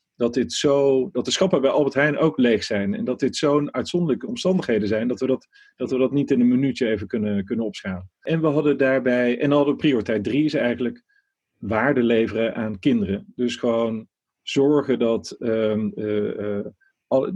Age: 40-59